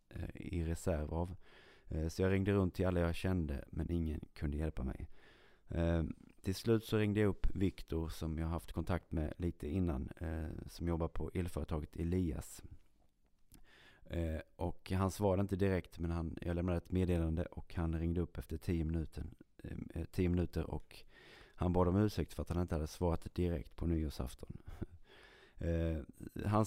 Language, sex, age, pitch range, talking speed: Swedish, male, 30-49, 80-90 Hz, 160 wpm